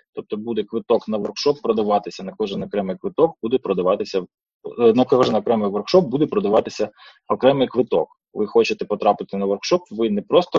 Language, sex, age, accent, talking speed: Ukrainian, male, 20-39, native, 160 wpm